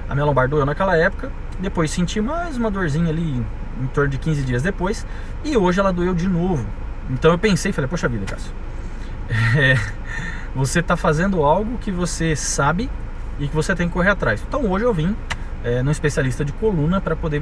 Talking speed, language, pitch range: 190 wpm, Portuguese, 120-195 Hz